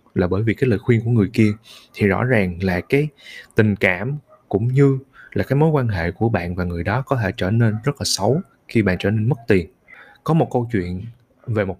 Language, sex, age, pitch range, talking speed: Vietnamese, male, 20-39, 100-130 Hz, 240 wpm